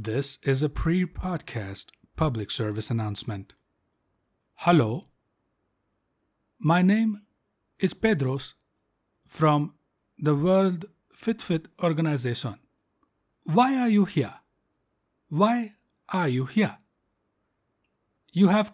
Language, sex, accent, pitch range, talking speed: English, male, Indian, 145-205 Hz, 90 wpm